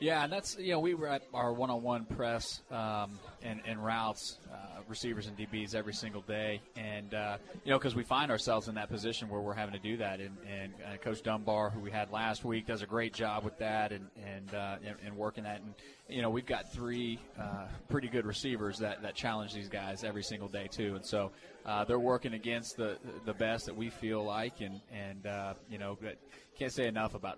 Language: English